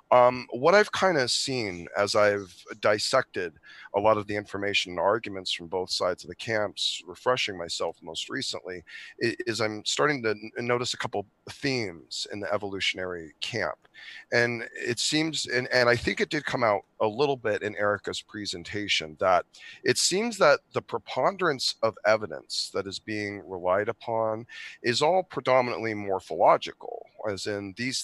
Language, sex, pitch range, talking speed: English, male, 100-130 Hz, 160 wpm